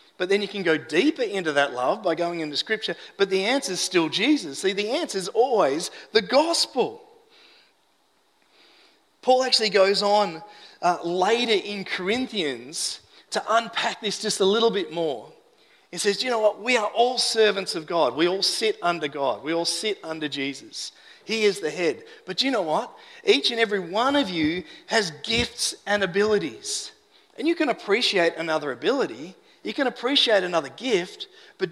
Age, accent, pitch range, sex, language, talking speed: 30-49, Australian, 190-265 Hz, male, English, 175 wpm